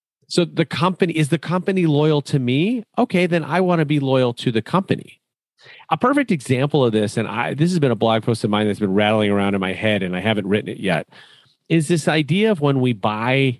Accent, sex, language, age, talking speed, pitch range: American, male, English, 40-59, 235 wpm, 115-160 Hz